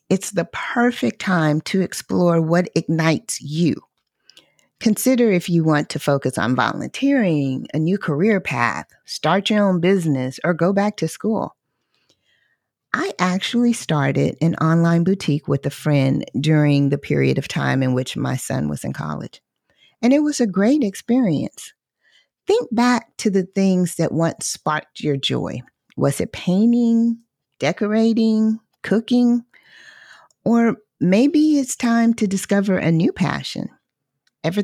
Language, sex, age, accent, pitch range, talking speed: English, female, 40-59, American, 150-215 Hz, 140 wpm